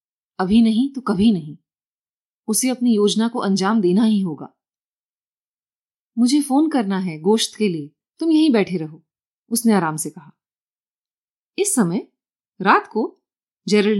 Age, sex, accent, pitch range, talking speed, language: 30-49, female, native, 185-265 Hz, 145 wpm, Hindi